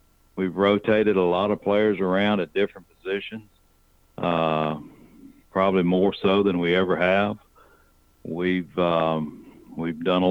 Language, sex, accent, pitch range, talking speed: English, male, American, 85-105 Hz, 135 wpm